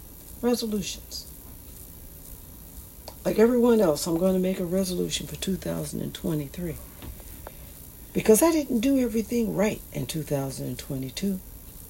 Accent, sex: American, female